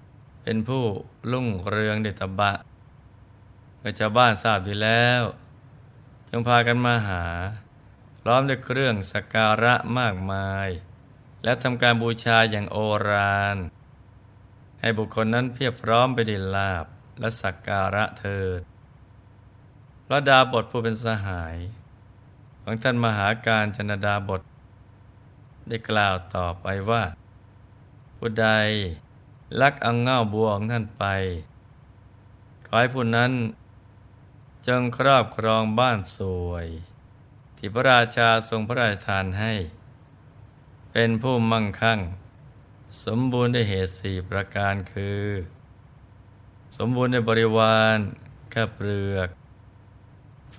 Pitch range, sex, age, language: 100-120 Hz, male, 20-39, Thai